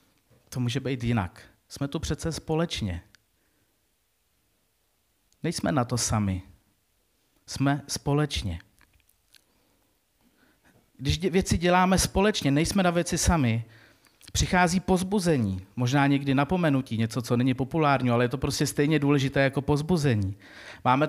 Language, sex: Czech, male